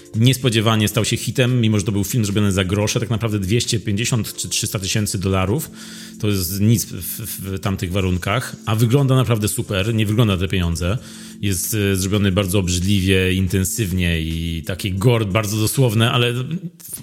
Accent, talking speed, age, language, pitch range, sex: native, 165 wpm, 30-49, Polish, 95-125 Hz, male